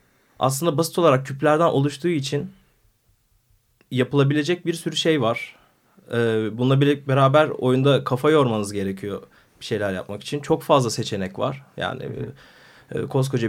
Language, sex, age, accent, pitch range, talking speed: Turkish, male, 30-49, native, 120-150 Hz, 125 wpm